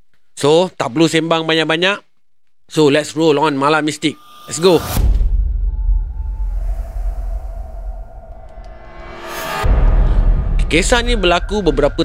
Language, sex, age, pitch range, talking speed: Malay, male, 30-49, 120-170 Hz, 85 wpm